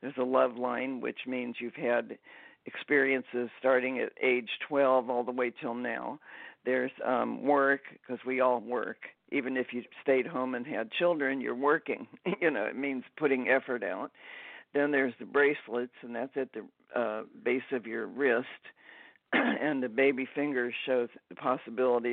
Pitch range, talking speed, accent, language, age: 120-140 Hz, 170 wpm, American, English, 50-69